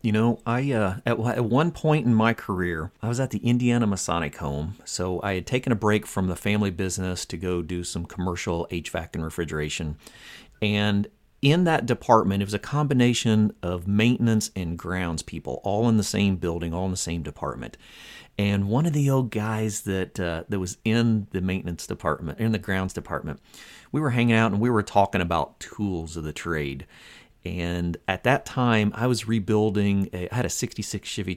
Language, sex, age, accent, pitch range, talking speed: English, male, 40-59, American, 90-120 Hz, 195 wpm